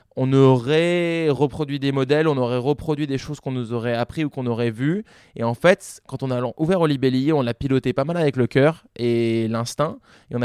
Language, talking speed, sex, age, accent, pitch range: French, 225 wpm, male, 20-39, French, 120-150 Hz